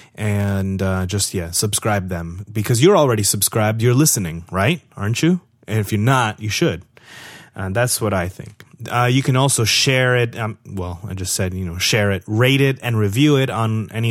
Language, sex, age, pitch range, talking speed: English, male, 30-49, 100-125 Hz, 205 wpm